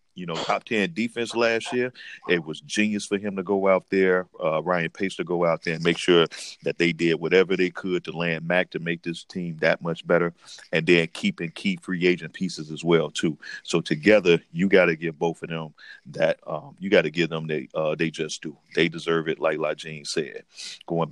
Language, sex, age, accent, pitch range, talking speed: English, male, 40-59, American, 85-100 Hz, 235 wpm